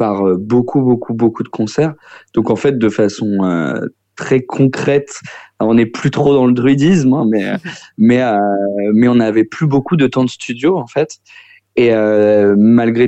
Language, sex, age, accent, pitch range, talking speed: French, male, 20-39, French, 105-130 Hz, 185 wpm